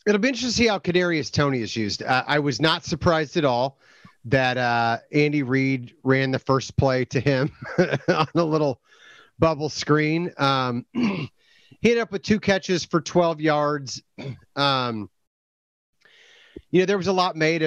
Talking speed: 170 wpm